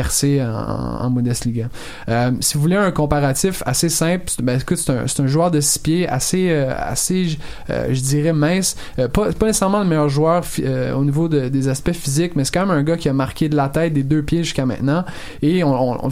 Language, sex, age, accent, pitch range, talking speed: French, male, 20-39, Canadian, 130-160 Hz, 250 wpm